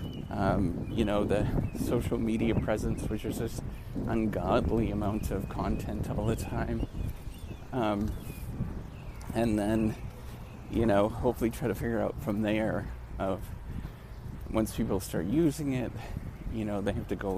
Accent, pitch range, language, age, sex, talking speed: American, 100-115 Hz, English, 30-49, male, 140 wpm